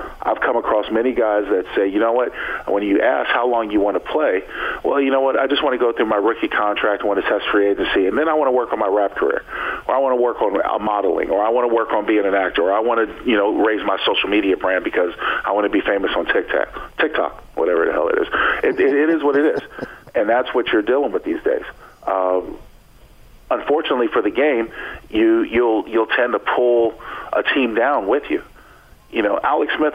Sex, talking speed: male, 245 wpm